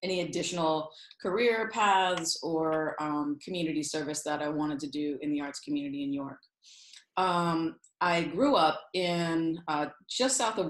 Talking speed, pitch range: 155 wpm, 160-190 Hz